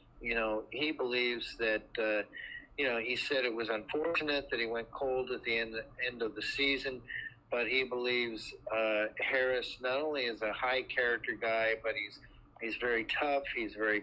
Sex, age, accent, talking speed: male, 50-69, American, 185 wpm